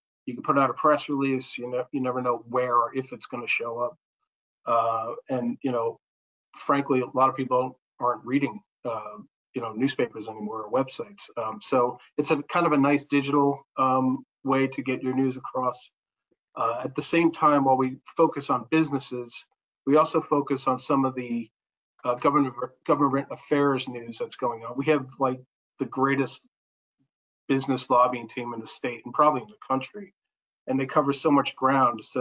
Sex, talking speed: male, 190 wpm